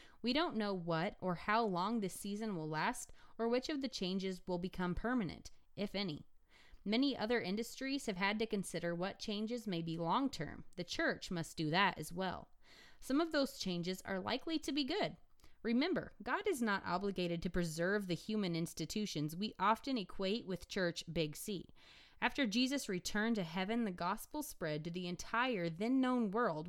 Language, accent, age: English, American, 20-39